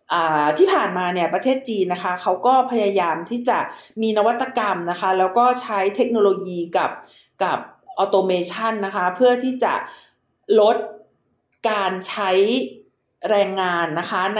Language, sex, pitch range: Thai, female, 190-250 Hz